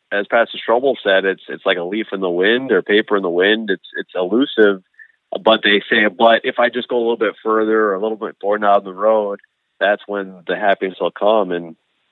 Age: 30-49